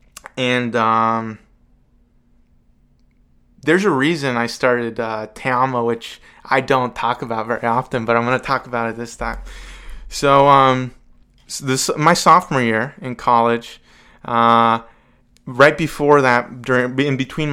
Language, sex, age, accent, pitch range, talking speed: English, male, 20-39, American, 115-125 Hz, 140 wpm